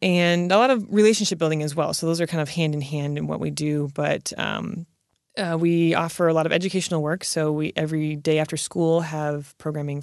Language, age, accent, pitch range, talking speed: English, 20-39, American, 155-180 Hz, 220 wpm